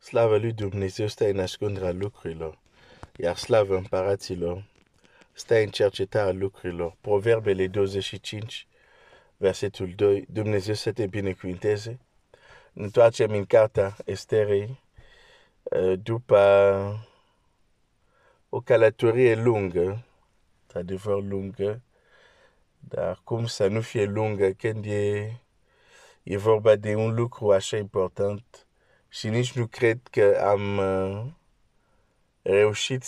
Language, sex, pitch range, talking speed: Romanian, male, 100-115 Hz, 80 wpm